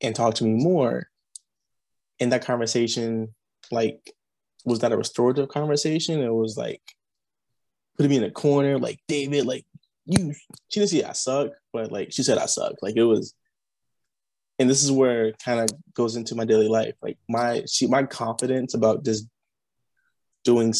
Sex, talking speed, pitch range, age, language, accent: male, 170 wpm, 115-150 Hz, 20-39, English, American